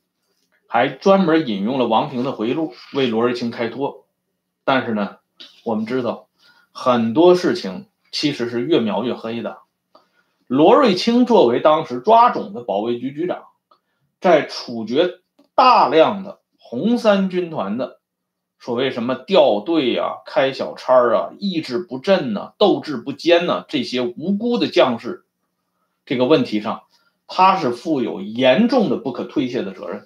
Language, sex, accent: Swedish, male, Chinese